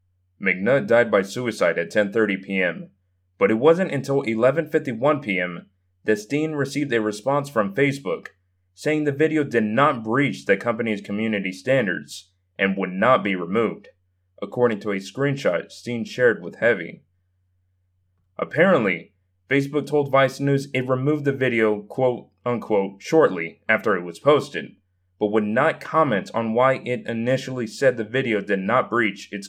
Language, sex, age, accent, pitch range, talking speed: English, male, 20-39, American, 95-130 Hz, 150 wpm